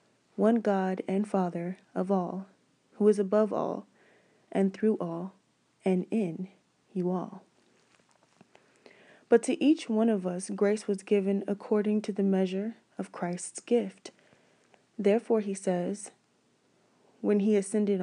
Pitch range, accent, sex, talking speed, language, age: 190-220 Hz, American, female, 130 wpm, English, 20-39